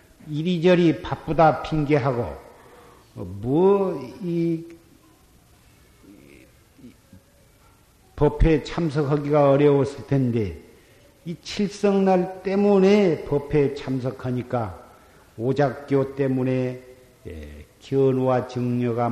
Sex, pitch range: male, 115-150 Hz